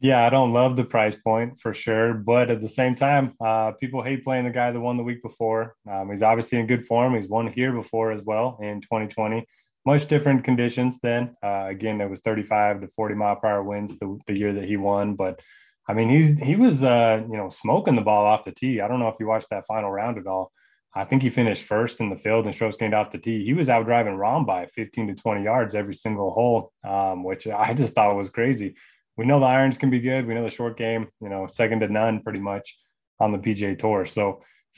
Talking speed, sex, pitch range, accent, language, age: 245 wpm, male, 105-125 Hz, American, English, 20-39